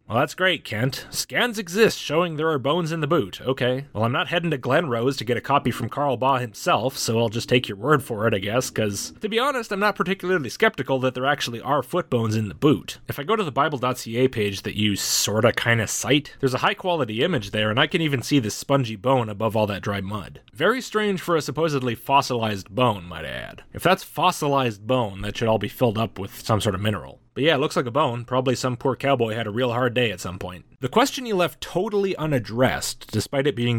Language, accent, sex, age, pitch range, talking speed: English, American, male, 30-49, 110-150 Hz, 245 wpm